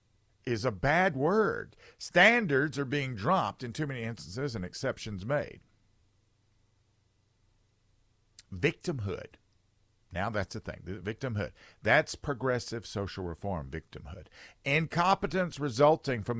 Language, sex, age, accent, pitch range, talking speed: English, male, 50-69, American, 100-145 Hz, 105 wpm